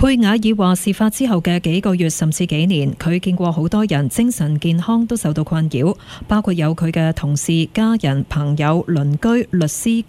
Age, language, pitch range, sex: 20-39, Chinese, 160-205 Hz, female